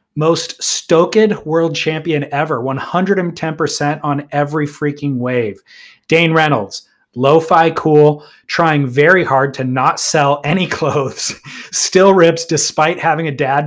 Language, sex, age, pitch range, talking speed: English, male, 30-49, 135-170 Hz, 125 wpm